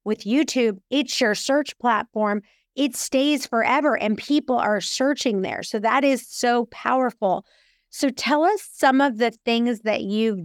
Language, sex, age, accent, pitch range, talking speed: English, female, 30-49, American, 195-235 Hz, 160 wpm